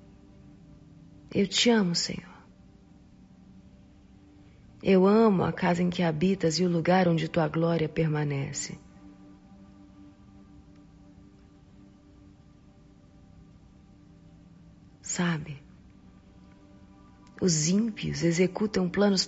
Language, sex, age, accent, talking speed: Portuguese, female, 40-59, Brazilian, 70 wpm